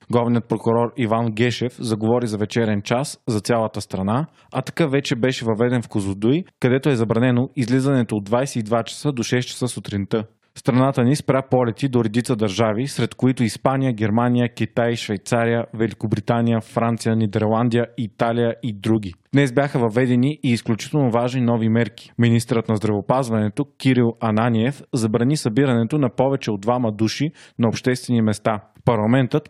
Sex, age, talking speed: male, 30-49, 150 wpm